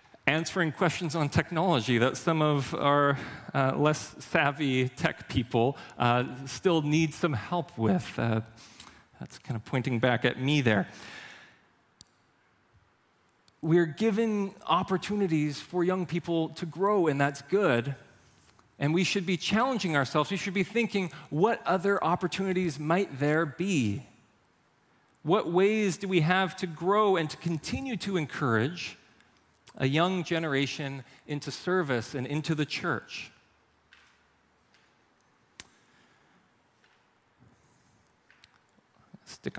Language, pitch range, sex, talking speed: English, 125-180 Hz, male, 115 wpm